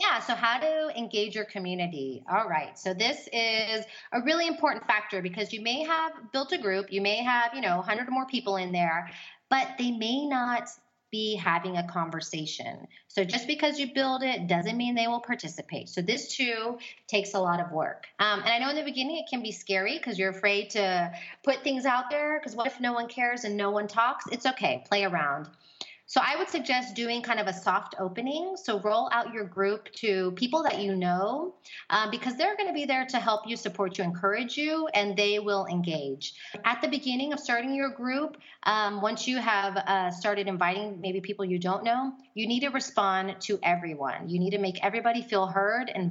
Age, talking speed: 30-49, 215 wpm